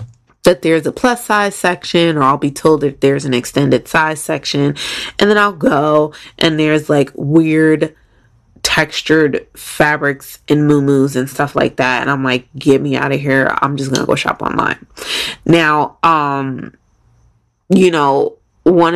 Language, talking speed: English, 165 wpm